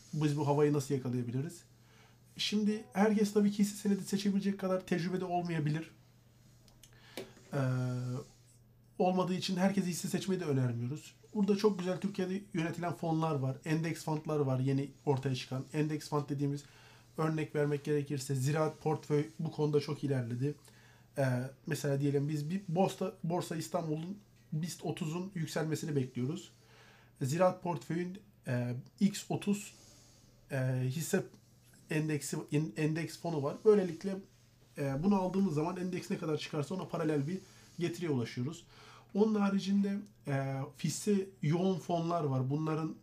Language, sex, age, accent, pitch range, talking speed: Turkish, male, 50-69, native, 130-175 Hz, 130 wpm